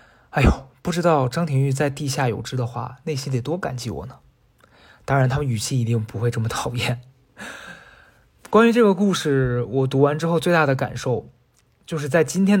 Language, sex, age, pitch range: Chinese, male, 20-39, 120-145 Hz